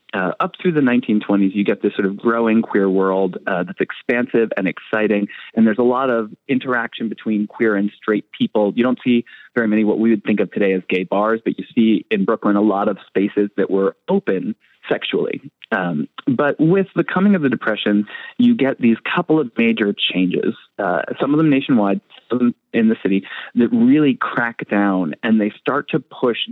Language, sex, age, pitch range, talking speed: English, male, 30-49, 100-135 Hz, 200 wpm